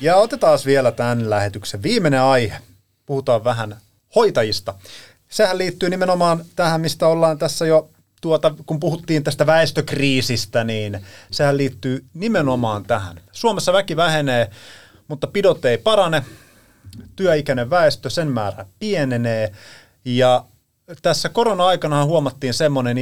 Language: Finnish